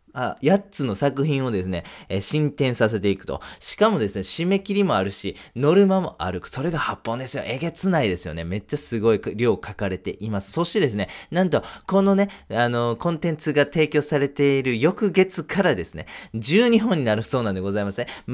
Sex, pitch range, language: male, 105-180 Hz, Japanese